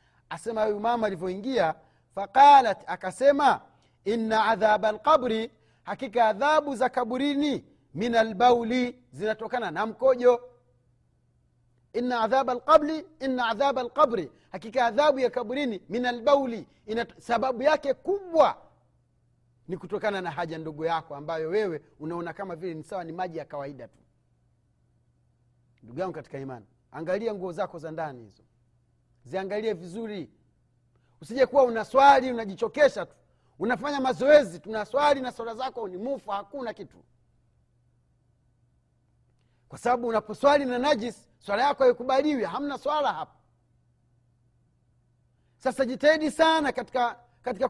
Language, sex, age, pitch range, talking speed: Swahili, male, 40-59, 160-265 Hz, 115 wpm